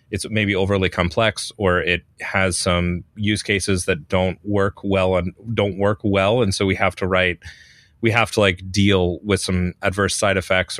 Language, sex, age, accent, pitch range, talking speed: English, male, 30-49, American, 95-115 Hz, 190 wpm